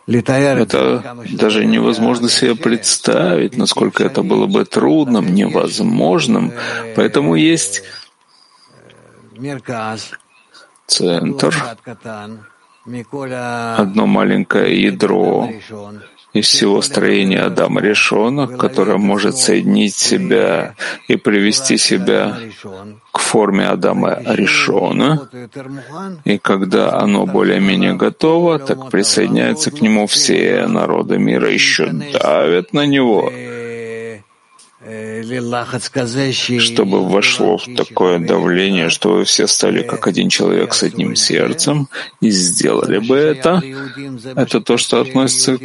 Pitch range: 110-135 Hz